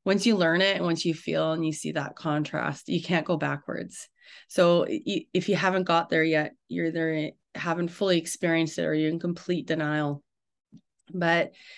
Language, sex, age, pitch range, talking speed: English, female, 20-39, 165-190 Hz, 185 wpm